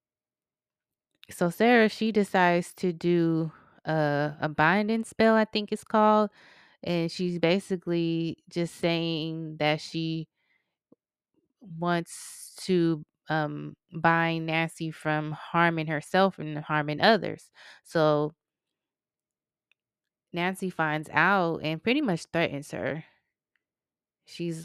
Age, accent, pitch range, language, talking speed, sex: 20-39, American, 155-180 Hz, English, 100 wpm, female